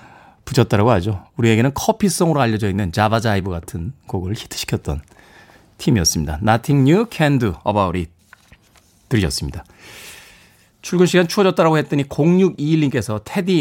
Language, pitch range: Korean, 105-165 Hz